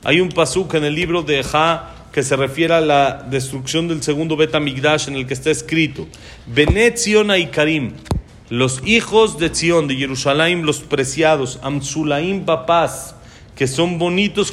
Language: Spanish